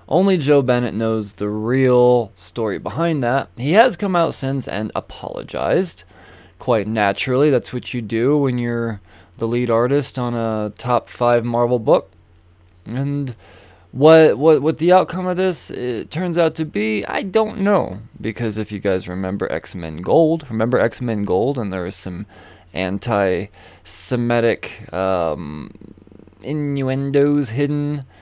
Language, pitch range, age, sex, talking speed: English, 95-140 Hz, 20-39, male, 140 wpm